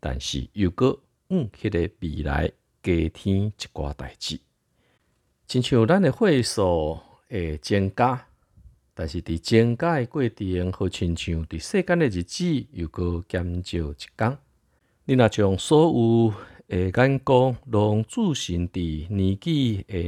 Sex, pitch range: male, 85-115 Hz